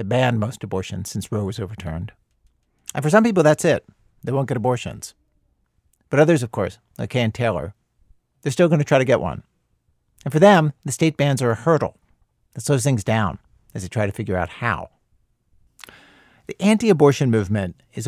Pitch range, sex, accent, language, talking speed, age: 105-135 Hz, male, American, English, 195 wpm, 50-69